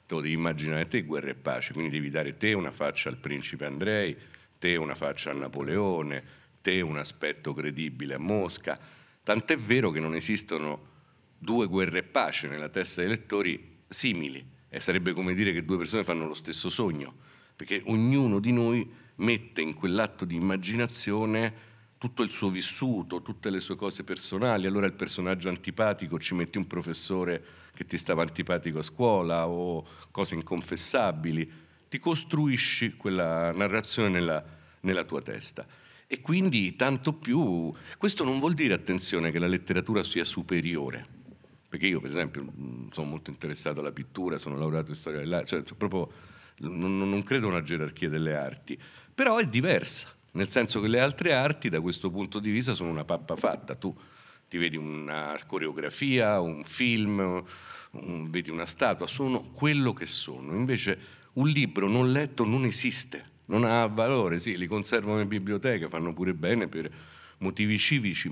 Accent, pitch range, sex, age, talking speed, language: native, 80-115 Hz, male, 50-69, 165 wpm, Italian